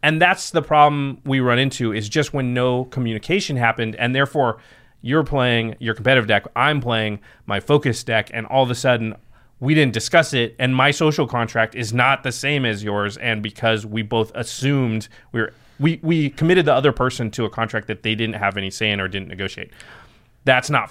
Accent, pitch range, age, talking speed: American, 115-155 Hz, 30-49, 205 wpm